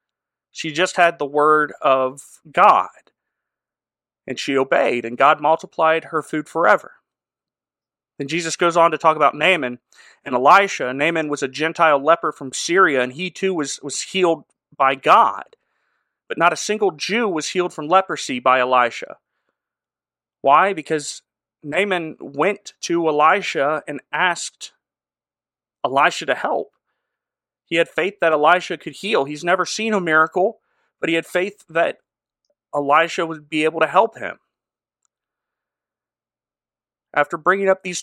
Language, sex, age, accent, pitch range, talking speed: English, male, 30-49, American, 145-180 Hz, 145 wpm